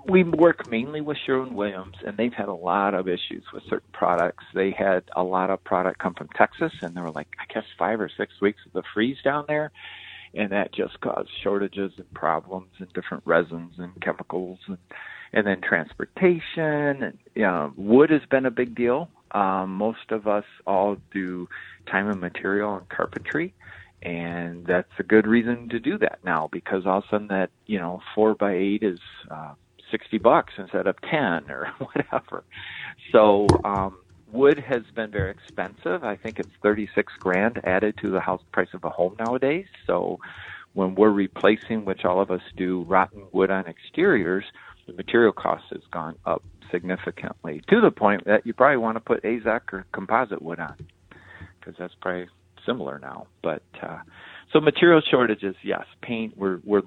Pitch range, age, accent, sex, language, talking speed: 90-115 Hz, 50-69, American, male, English, 185 wpm